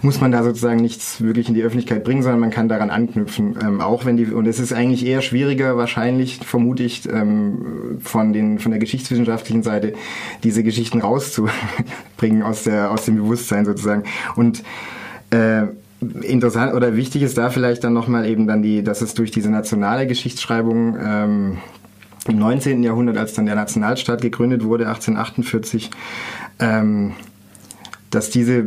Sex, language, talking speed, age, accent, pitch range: male, German, 155 wpm, 20-39, German, 110-120 Hz